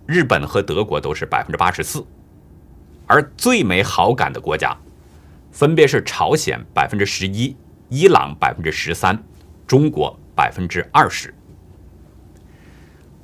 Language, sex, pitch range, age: Chinese, male, 85-140 Hz, 50-69